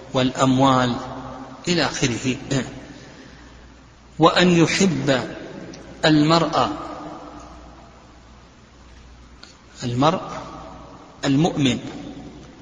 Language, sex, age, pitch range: Arabic, male, 50-69, 135-160 Hz